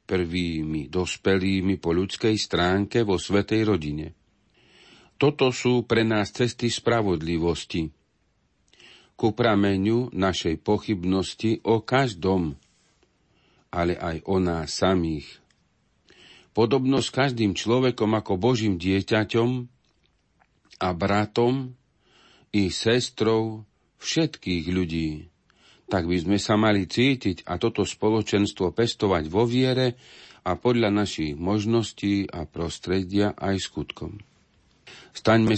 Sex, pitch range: male, 90-115 Hz